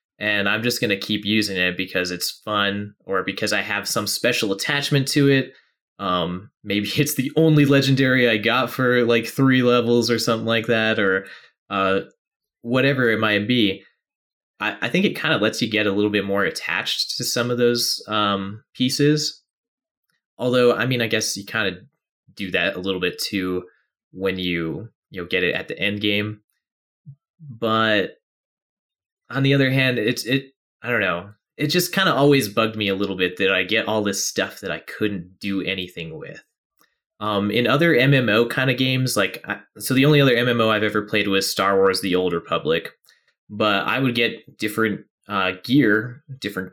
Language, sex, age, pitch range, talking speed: English, male, 20-39, 100-130 Hz, 190 wpm